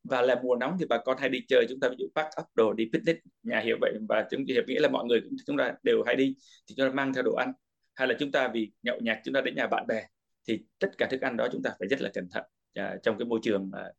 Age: 20-39